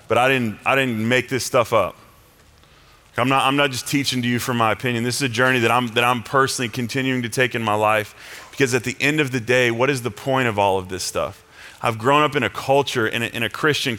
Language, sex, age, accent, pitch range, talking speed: English, male, 30-49, American, 110-135 Hz, 265 wpm